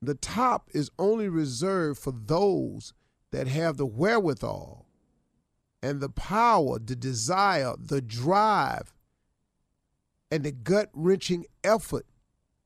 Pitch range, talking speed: 140-215 Hz, 105 wpm